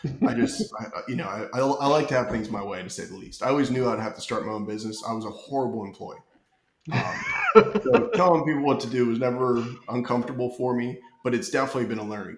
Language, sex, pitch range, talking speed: English, male, 110-135 Hz, 240 wpm